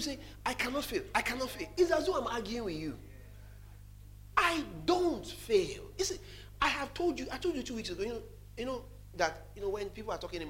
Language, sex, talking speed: English, male, 235 wpm